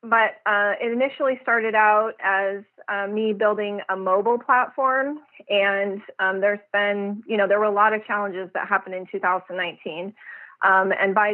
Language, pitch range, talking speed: English, 195-220 Hz, 170 wpm